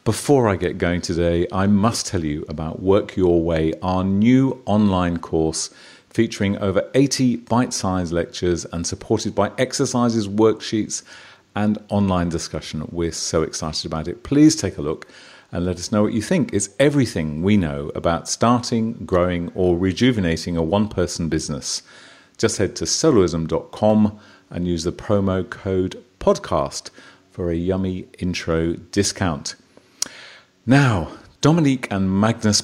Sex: male